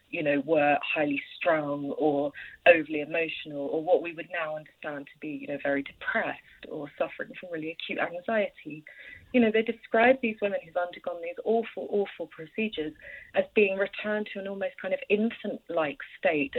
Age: 30-49